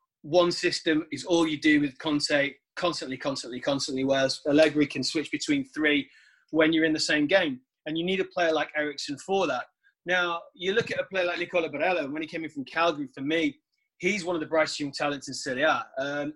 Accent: British